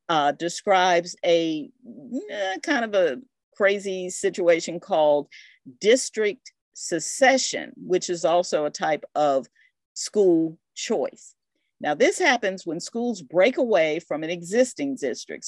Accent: American